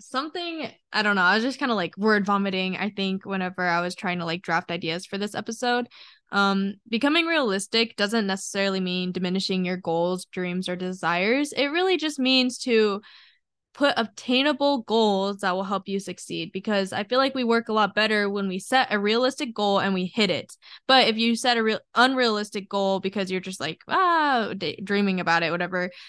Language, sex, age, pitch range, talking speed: English, female, 10-29, 190-230 Hz, 200 wpm